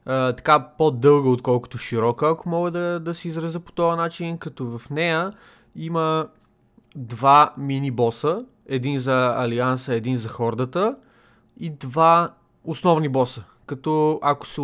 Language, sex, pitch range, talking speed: Bulgarian, male, 130-175 Hz, 135 wpm